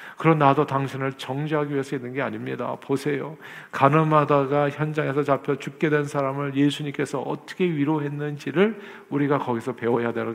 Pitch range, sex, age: 125-150 Hz, male, 50-69